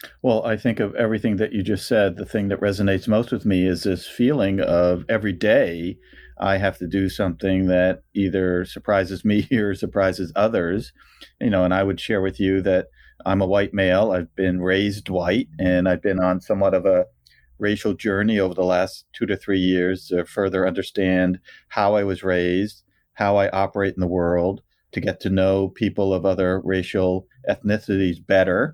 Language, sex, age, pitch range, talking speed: English, male, 40-59, 95-105 Hz, 190 wpm